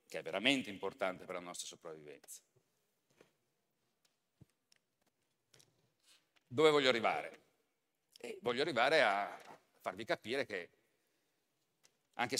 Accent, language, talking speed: native, Italian, 90 wpm